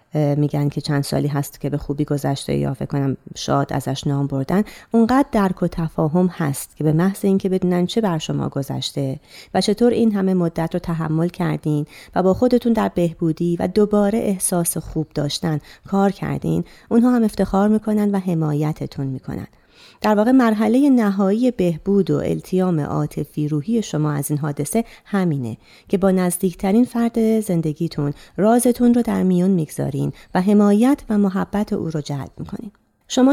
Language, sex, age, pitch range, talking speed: Persian, female, 30-49, 150-205 Hz, 160 wpm